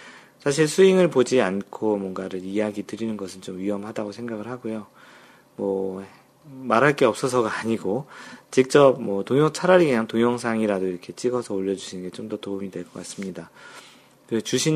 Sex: male